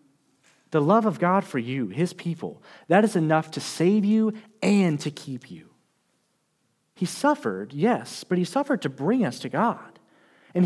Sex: male